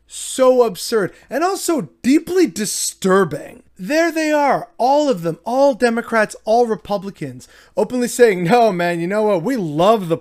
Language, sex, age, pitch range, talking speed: English, male, 30-49, 155-210 Hz, 155 wpm